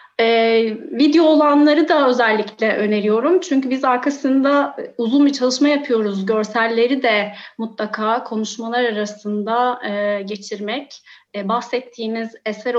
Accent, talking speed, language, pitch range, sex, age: native, 110 wpm, Turkish, 220-285 Hz, female, 30-49